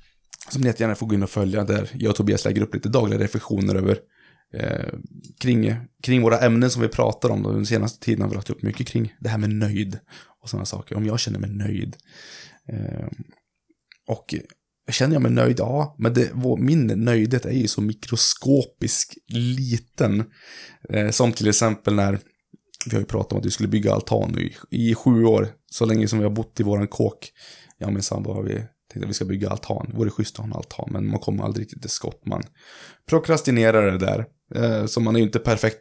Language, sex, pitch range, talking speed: Swedish, male, 105-120 Hz, 215 wpm